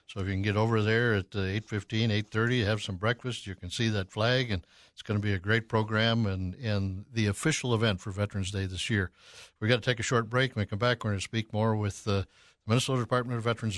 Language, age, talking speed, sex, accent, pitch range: English, 60-79, 255 wpm, male, American, 100-120 Hz